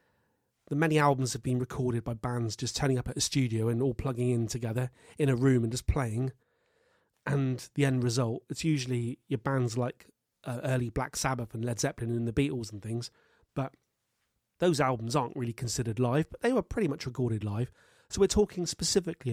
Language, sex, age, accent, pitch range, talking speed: English, male, 30-49, British, 120-145 Hz, 200 wpm